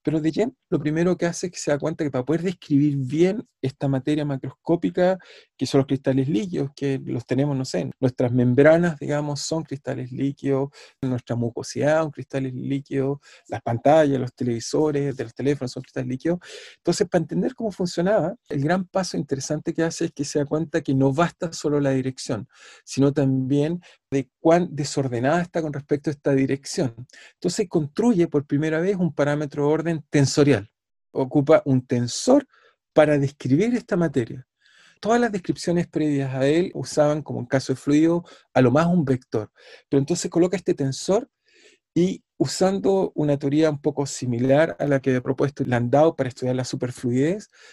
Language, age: Spanish, 40-59